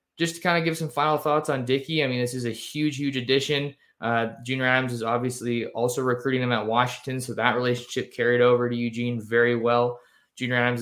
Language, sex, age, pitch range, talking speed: English, male, 20-39, 115-130 Hz, 215 wpm